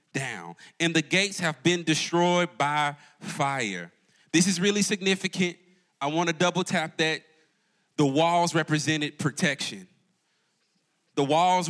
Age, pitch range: 30-49, 145-185 Hz